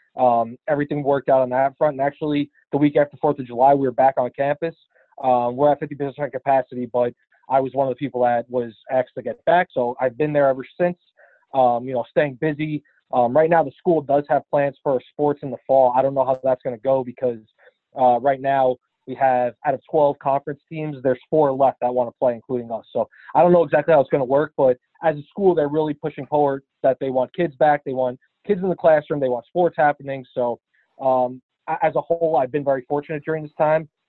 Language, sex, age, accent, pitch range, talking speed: English, male, 20-39, American, 125-150 Hz, 240 wpm